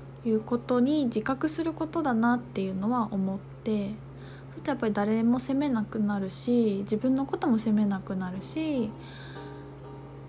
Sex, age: female, 20-39